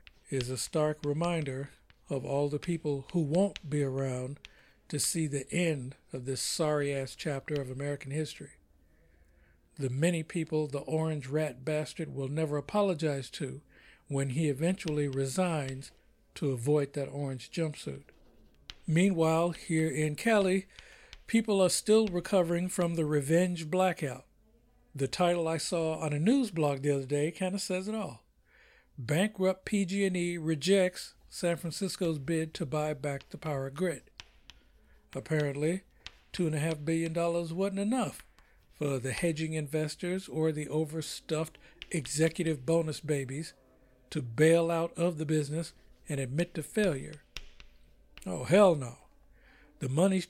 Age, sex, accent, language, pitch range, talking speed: 60-79, male, American, English, 140-175 Hz, 140 wpm